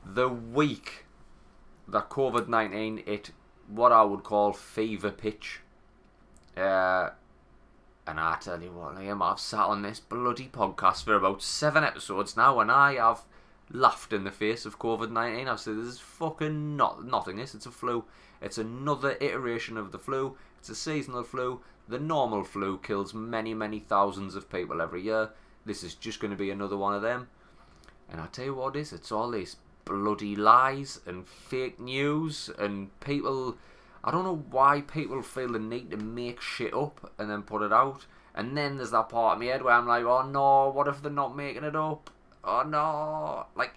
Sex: male